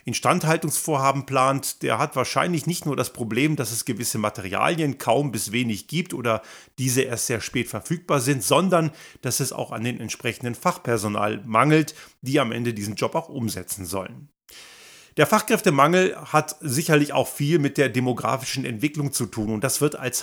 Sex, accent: male, German